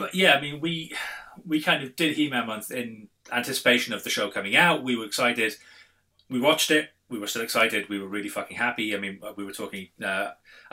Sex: male